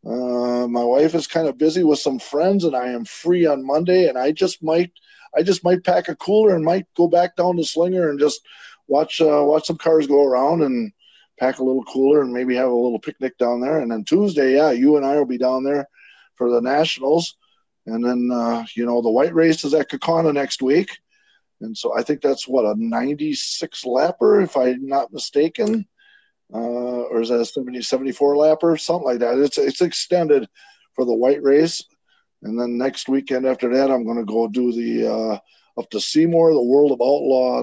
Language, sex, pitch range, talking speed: English, male, 125-165 Hz, 215 wpm